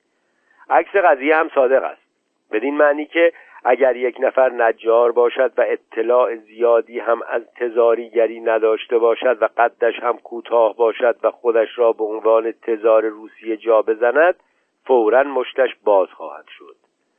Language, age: Persian, 50-69